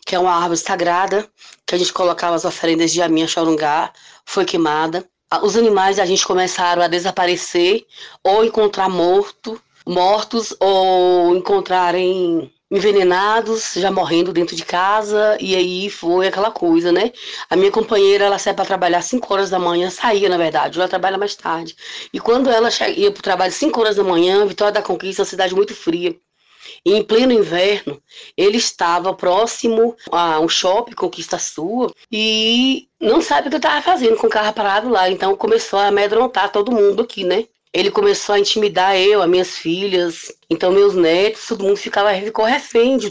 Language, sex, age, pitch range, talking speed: Portuguese, female, 20-39, 180-225 Hz, 175 wpm